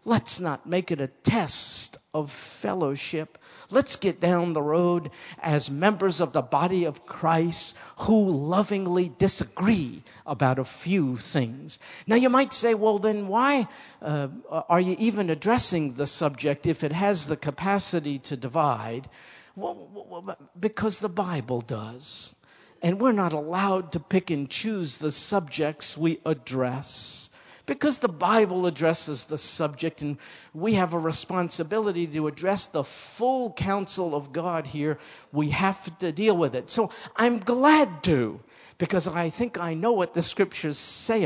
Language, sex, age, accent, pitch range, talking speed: English, male, 50-69, American, 145-190 Hz, 150 wpm